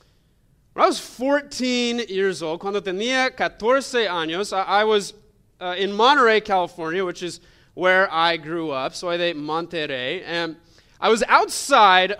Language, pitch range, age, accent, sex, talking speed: English, 165-215 Hz, 30-49, American, male, 150 wpm